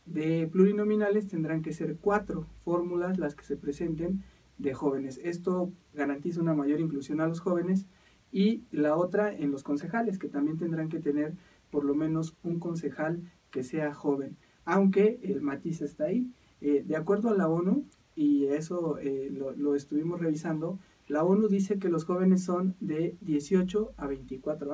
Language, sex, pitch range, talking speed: English, male, 145-180 Hz, 165 wpm